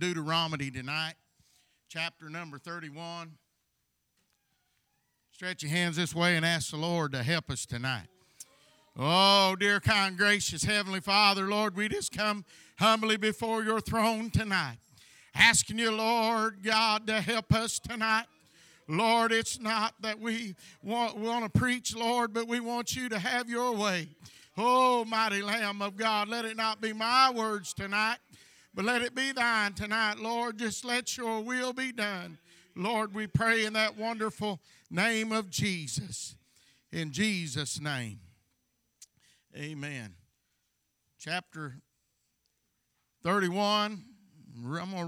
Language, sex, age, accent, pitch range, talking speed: English, male, 50-69, American, 160-225 Hz, 135 wpm